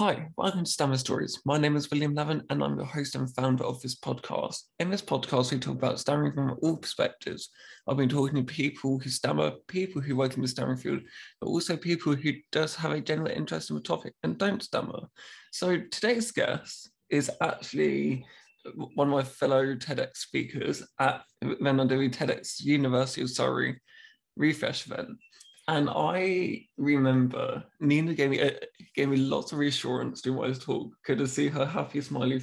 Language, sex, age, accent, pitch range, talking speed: English, male, 20-39, British, 130-165 Hz, 180 wpm